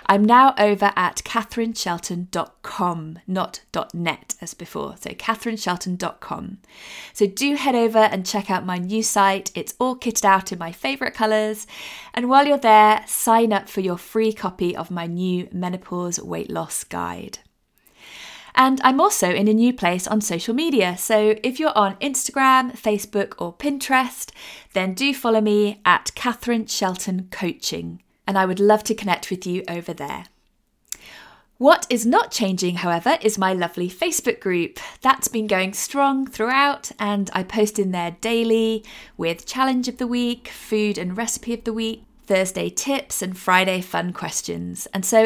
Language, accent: English, British